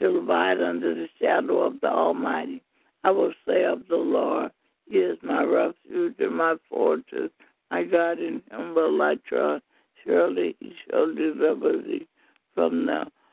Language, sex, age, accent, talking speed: English, male, 60-79, American, 160 wpm